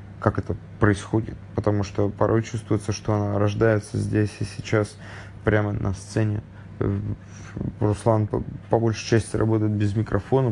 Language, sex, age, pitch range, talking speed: English, male, 20-39, 100-110 Hz, 135 wpm